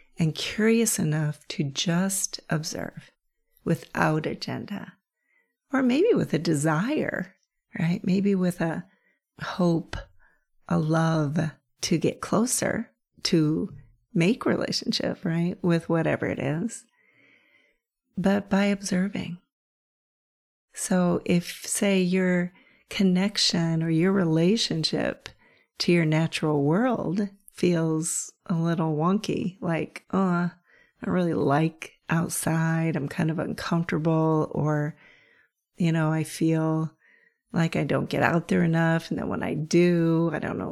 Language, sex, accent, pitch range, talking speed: English, female, American, 160-210 Hz, 120 wpm